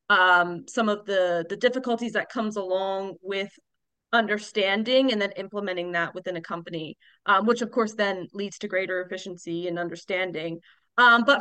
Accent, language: American, English